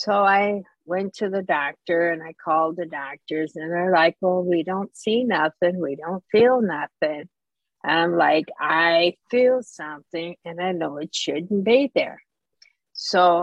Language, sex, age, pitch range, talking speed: English, female, 60-79, 160-205 Hz, 160 wpm